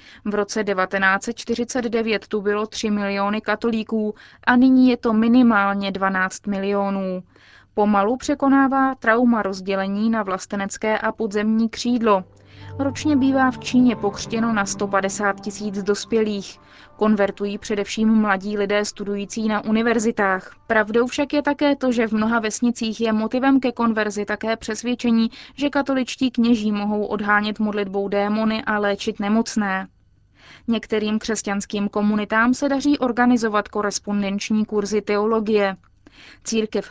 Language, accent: Czech, native